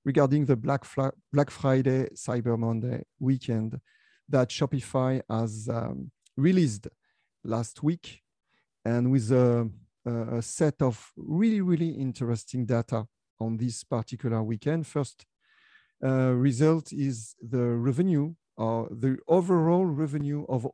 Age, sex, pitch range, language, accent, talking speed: 50-69, male, 120-150 Hz, English, French, 115 wpm